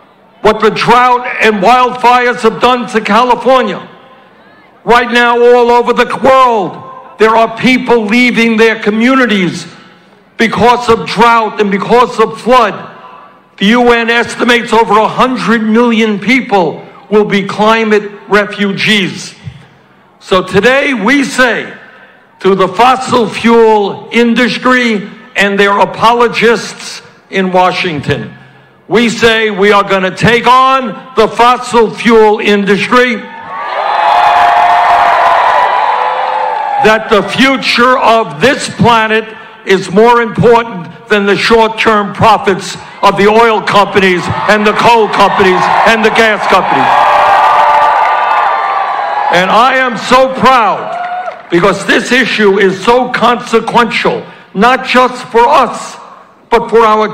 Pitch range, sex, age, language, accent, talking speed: 205-245 Hz, male, 60-79, English, American, 115 wpm